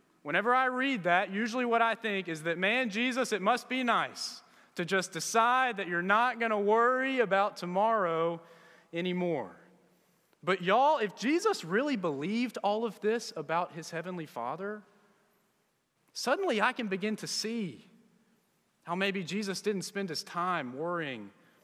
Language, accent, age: English, American, 30-49